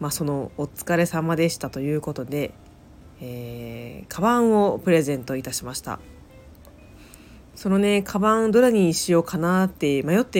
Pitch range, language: 130-175 Hz, Japanese